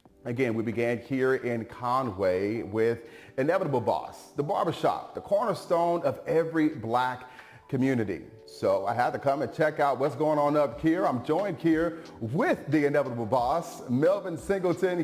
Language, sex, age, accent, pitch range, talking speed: English, male, 30-49, American, 110-150 Hz, 155 wpm